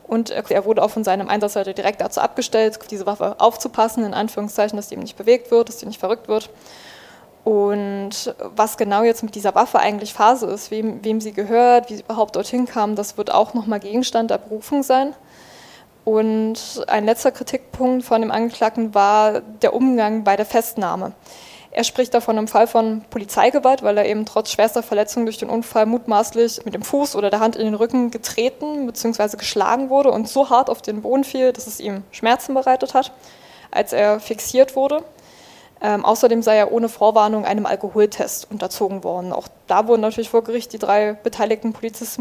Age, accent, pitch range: 10-29, German, 210-240 Hz